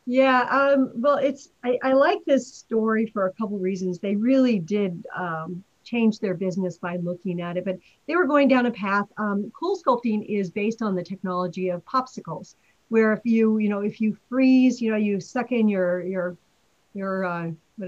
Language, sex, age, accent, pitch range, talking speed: English, female, 50-69, American, 185-245 Hz, 200 wpm